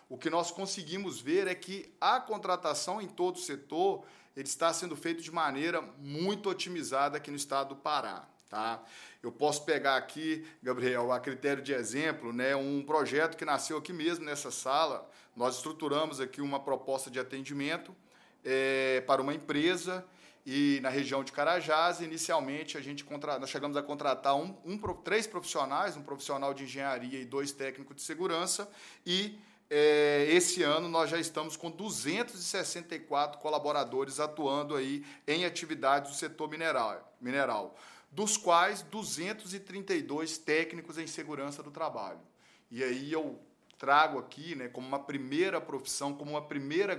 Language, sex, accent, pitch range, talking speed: English, male, Brazilian, 140-170 Hz, 140 wpm